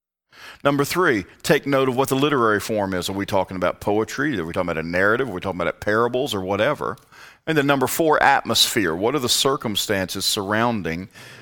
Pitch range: 85-120 Hz